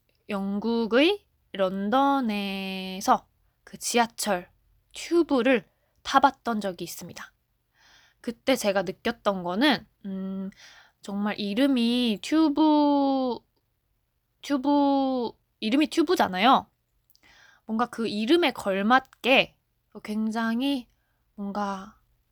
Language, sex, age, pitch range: Korean, female, 20-39, 195-275 Hz